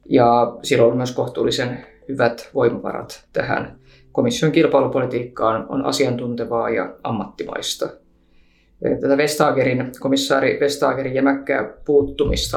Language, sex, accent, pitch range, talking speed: Finnish, female, native, 120-140 Hz, 75 wpm